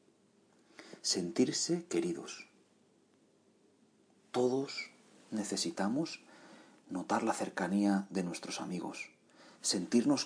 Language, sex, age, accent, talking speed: Spanish, male, 40-59, Spanish, 65 wpm